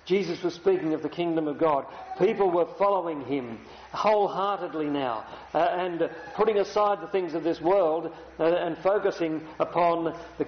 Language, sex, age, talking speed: English, male, 50-69, 160 wpm